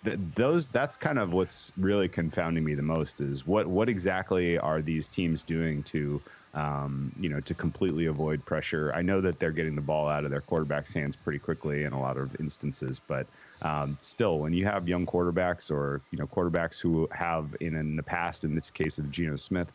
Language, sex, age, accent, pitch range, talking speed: English, male, 30-49, American, 75-85 Hz, 215 wpm